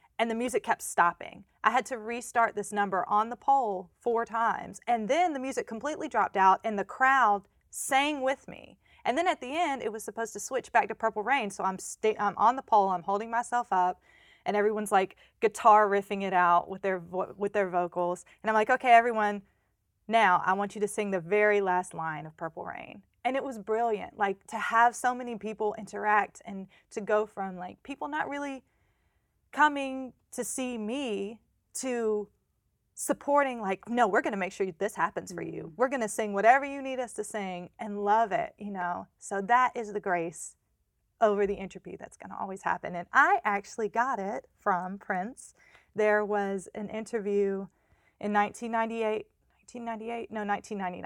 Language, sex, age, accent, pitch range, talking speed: English, female, 20-39, American, 190-235 Hz, 190 wpm